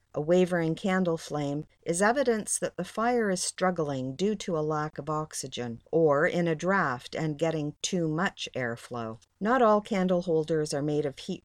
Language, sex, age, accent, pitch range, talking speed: English, female, 50-69, American, 140-180 Hz, 180 wpm